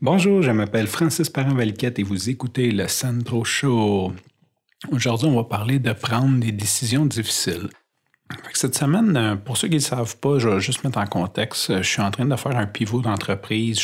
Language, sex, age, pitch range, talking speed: French, male, 40-59, 100-120 Hz, 190 wpm